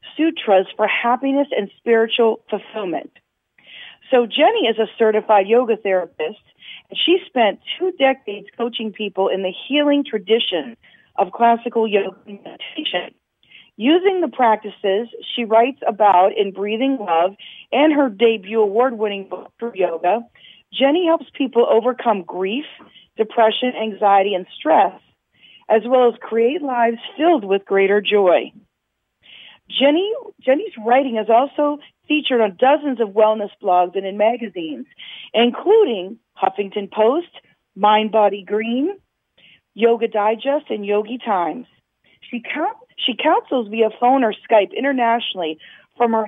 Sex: female